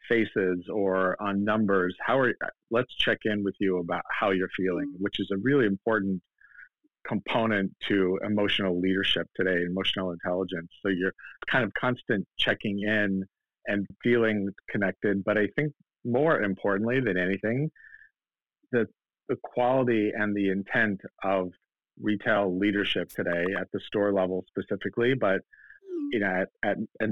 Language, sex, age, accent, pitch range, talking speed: English, male, 50-69, American, 95-110 Hz, 145 wpm